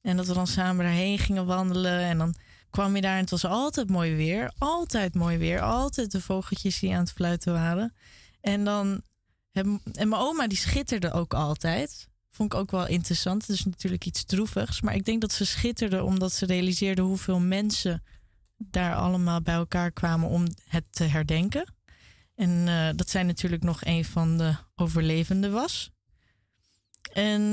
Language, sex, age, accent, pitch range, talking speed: Dutch, female, 20-39, Dutch, 170-210 Hz, 180 wpm